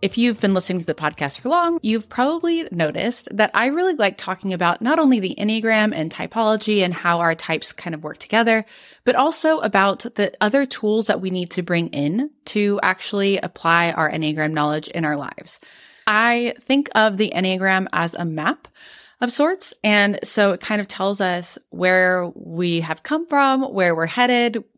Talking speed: 190 wpm